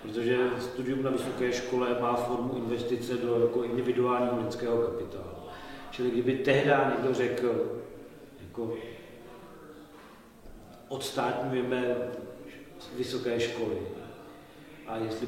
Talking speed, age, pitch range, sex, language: 95 wpm, 40-59, 120-140 Hz, male, Slovak